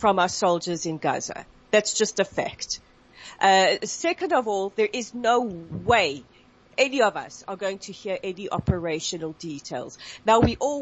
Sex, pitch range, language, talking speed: female, 200-265 Hz, English, 165 wpm